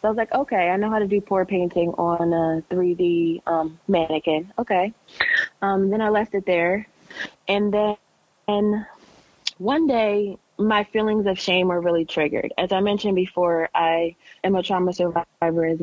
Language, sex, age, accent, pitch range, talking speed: English, female, 20-39, American, 165-190 Hz, 170 wpm